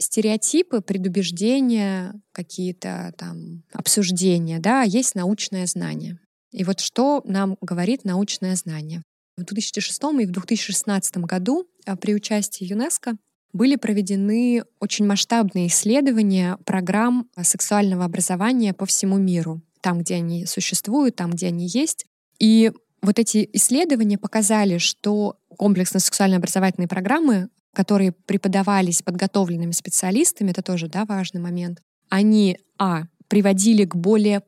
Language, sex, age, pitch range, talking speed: Russian, female, 20-39, 180-215 Hz, 115 wpm